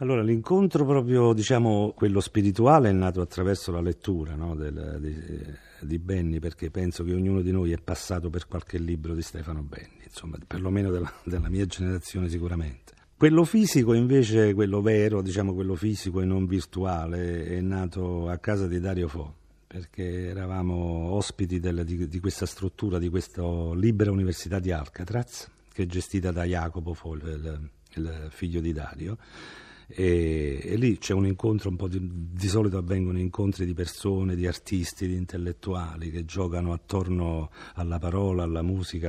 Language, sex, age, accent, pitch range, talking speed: Italian, male, 50-69, native, 85-100 Hz, 160 wpm